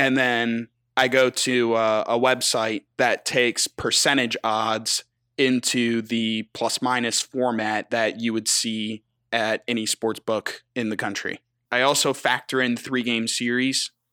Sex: male